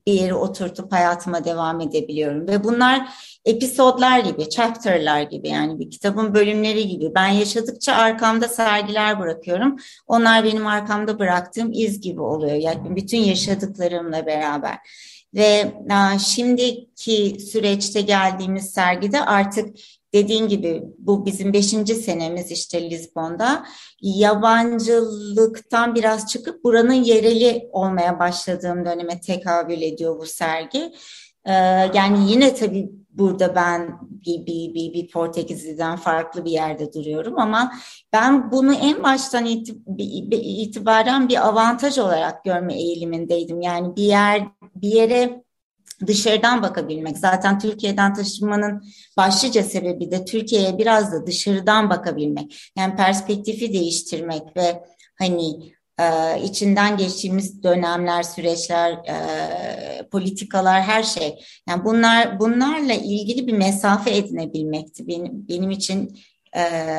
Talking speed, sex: 115 wpm, female